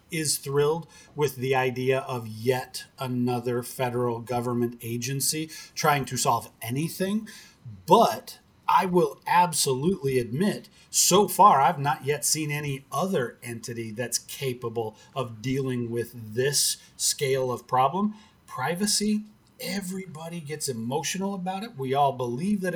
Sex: male